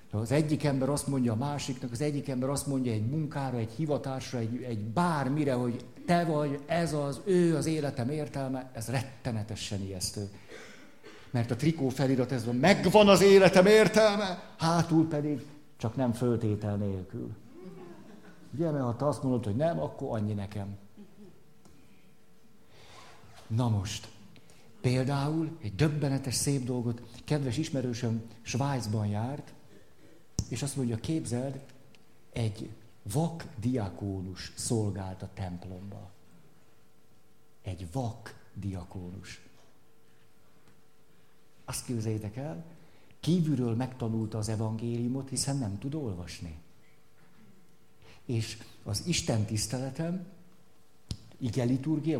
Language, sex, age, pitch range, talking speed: Hungarian, male, 50-69, 110-150 Hz, 110 wpm